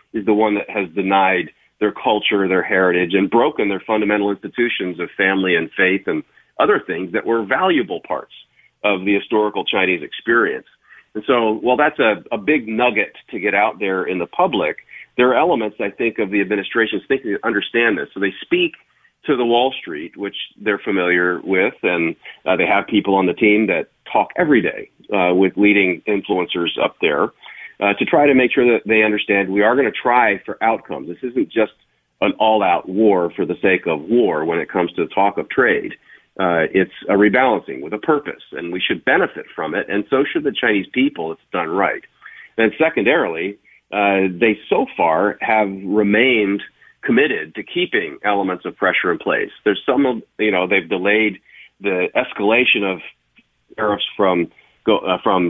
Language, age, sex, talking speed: English, 40-59, male, 190 wpm